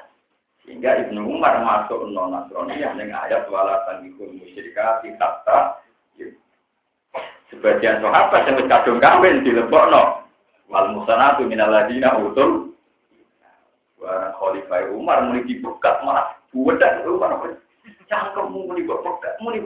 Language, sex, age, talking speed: Indonesian, male, 50-69, 105 wpm